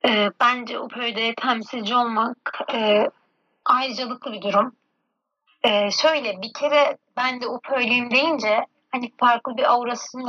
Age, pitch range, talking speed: 30-49, 215-250 Hz, 120 wpm